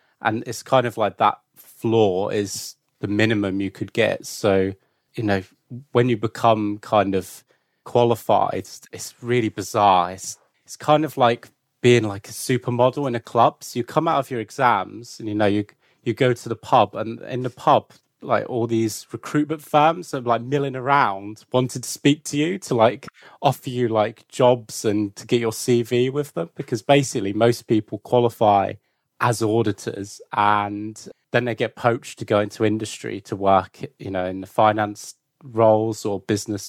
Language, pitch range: English, 105-125 Hz